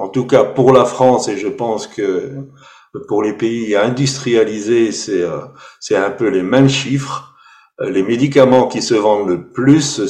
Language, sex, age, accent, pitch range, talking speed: French, male, 50-69, French, 125-160 Hz, 165 wpm